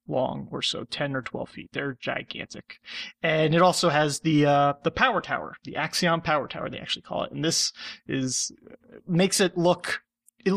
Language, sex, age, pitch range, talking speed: English, male, 30-49, 140-170 Hz, 185 wpm